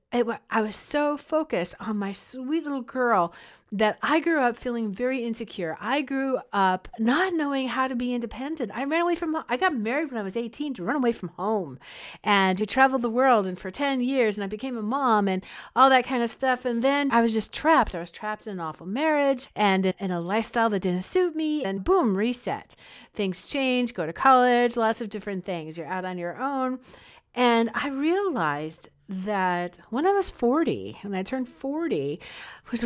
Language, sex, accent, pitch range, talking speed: English, female, American, 195-270 Hz, 205 wpm